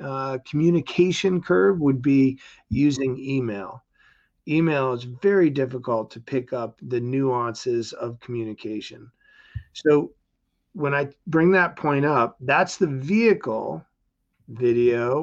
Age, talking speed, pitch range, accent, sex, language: 50-69, 115 wpm, 130-170 Hz, American, male, English